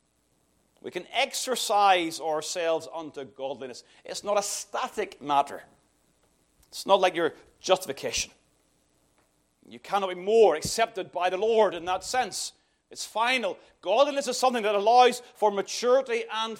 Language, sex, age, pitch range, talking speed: English, male, 40-59, 175-250 Hz, 135 wpm